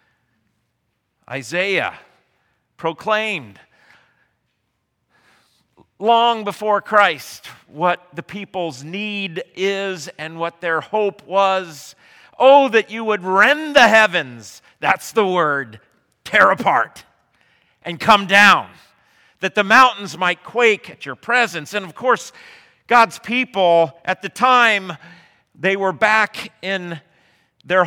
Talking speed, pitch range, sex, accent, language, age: 110 wpm, 160-215 Hz, male, American, English, 40-59